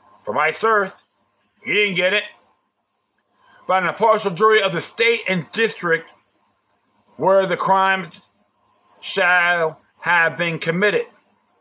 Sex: male